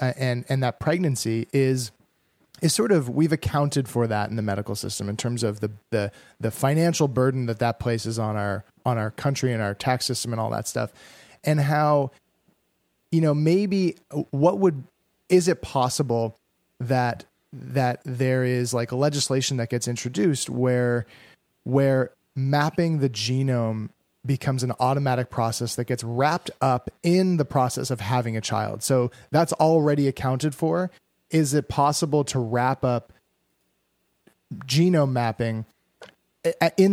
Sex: male